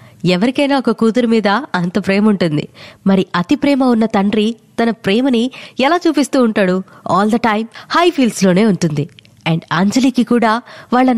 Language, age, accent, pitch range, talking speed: Telugu, 20-39, native, 185-230 Hz, 150 wpm